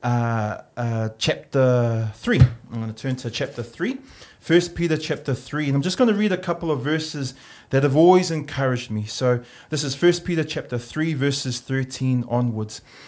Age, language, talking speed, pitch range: 30-49, English, 185 wpm, 120-150 Hz